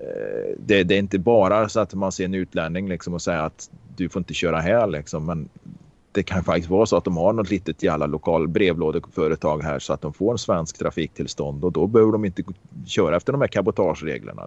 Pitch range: 85-100 Hz